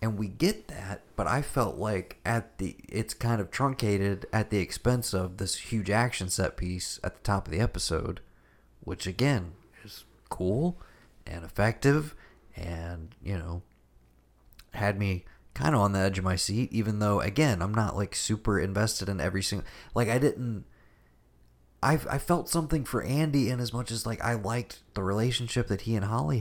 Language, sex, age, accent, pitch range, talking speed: English, male, 30-49, American, 95-120 Hz, 185 wpm